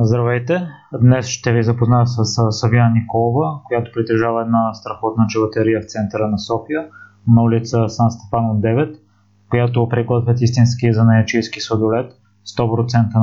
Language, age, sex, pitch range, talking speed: Bulgarian, 20-39, male, 115-120 Hz, 130 wpm